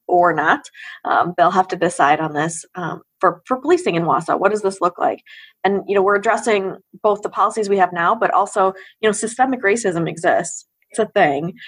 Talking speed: 210 wpm